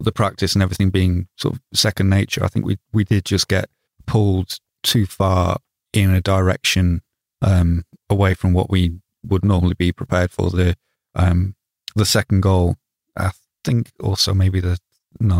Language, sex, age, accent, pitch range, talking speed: English, male, 30-49, British, 90-100 Hz, 170 wpm